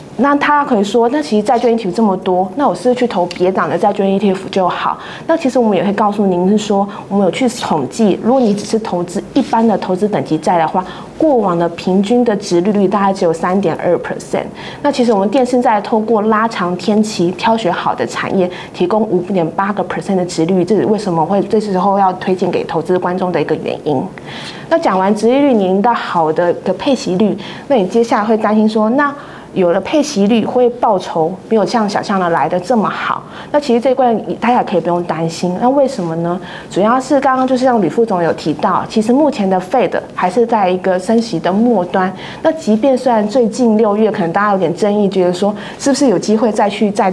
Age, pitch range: 20-39, 185-240 Hz